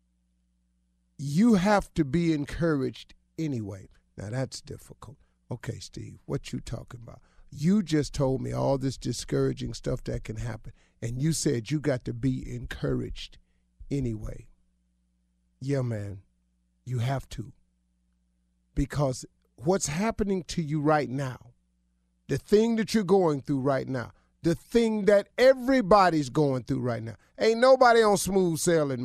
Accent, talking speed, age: American, 140 wpm, 50-69